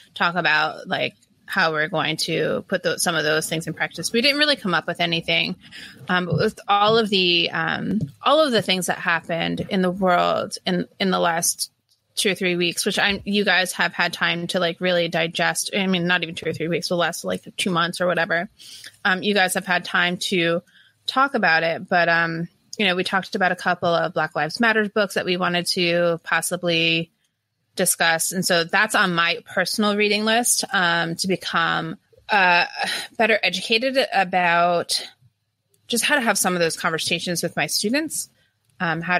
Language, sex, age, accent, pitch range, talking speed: English, female, 20-39, American, 170-200 Hz, 195 wpm